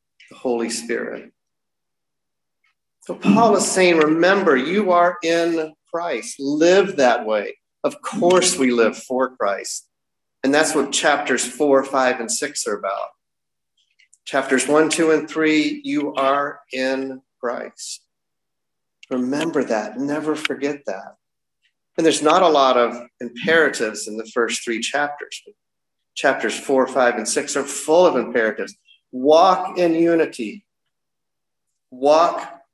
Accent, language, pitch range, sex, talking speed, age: American, English, 130-170 Hz, male, 130 wpm, 40-59